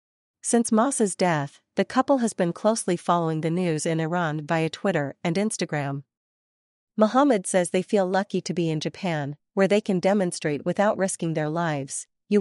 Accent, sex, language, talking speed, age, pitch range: American, female, English, 170 wpm, 40-59, 165-210 Hz